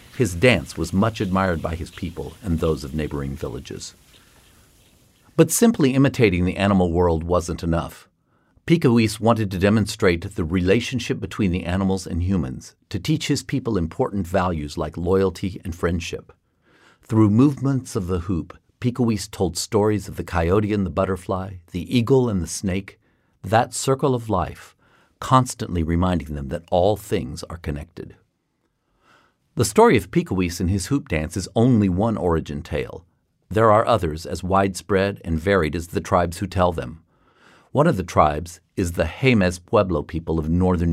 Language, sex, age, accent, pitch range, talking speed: English, male, 50-69, American, 85-110 Hz, 160 wpm